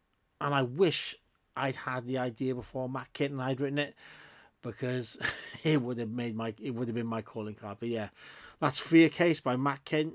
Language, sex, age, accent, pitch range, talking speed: English, male, 30-49, British, 125-150 Hz, 205 wpm